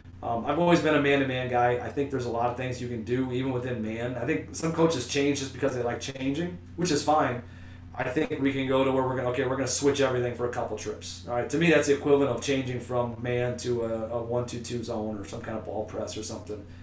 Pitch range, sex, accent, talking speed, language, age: 110-130 Hz, male, American, 260 wpm, English, 30-49